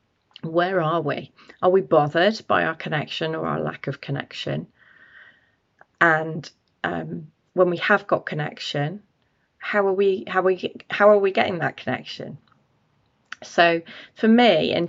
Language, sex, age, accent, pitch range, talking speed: English, female, 30-49, British, 150-185 Hz, 145 wpm